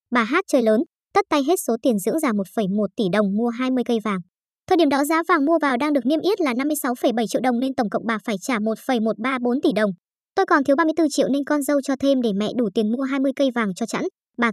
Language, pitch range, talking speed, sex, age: Vietnamese, 230-295 Hz, 260 wpm, male, 20-39